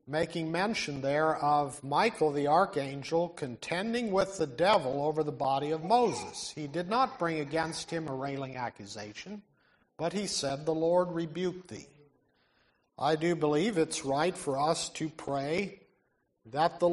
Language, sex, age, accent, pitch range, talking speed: English, male, 50-69, American, 145-185 Hz, 150 wpm